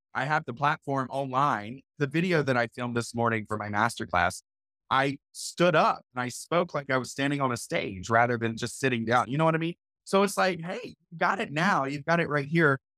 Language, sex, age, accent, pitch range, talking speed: English, male, 30-49, American, 115-150 Hz, 230 wpm